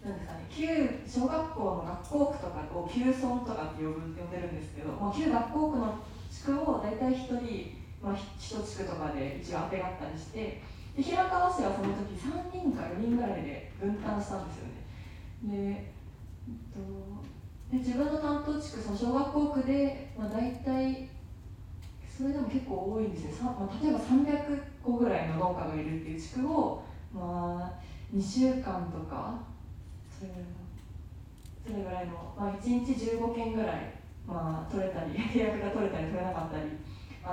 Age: 20-39